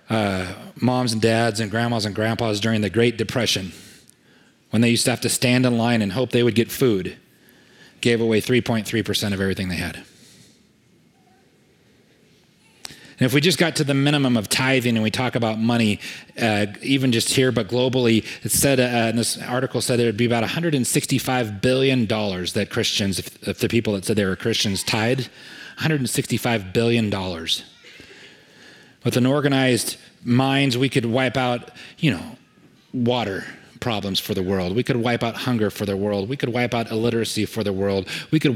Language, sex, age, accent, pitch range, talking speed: English, male, 30-49, American, 105-125 Hz, 185 wpm